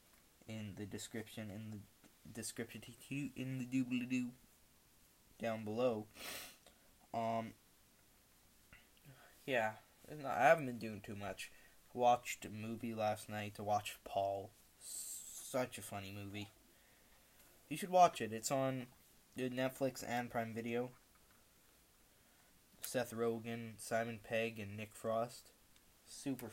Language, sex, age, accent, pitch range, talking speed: English, male, 10-29, American, 105-120 Hz, 115 wpm